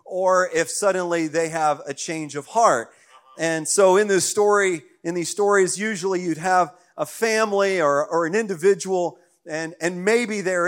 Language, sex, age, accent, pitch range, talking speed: English, male, 40-59, American, 155-190 Hz, 170 wpm